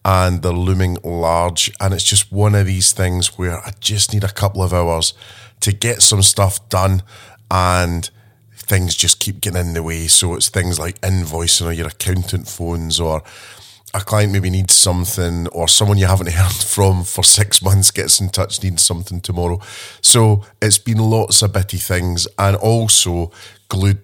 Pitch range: 90-105 Hz